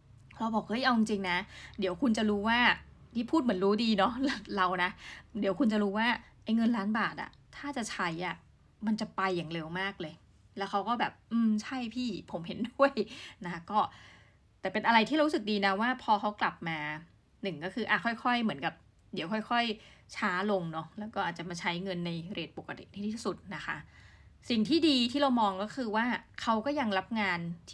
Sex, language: female, Thai